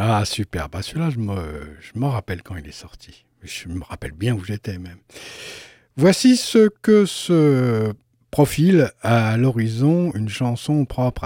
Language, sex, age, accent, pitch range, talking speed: French, male, 60-79, French, 105-150 Hz, 160 wpm